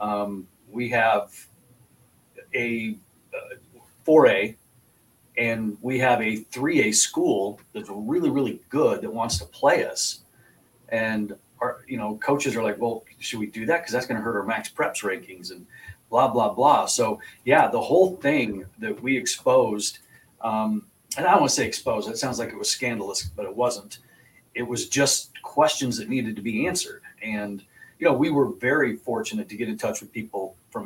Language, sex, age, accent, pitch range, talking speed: English, male, 40-59, American, 105-135 Hz, 185 wpm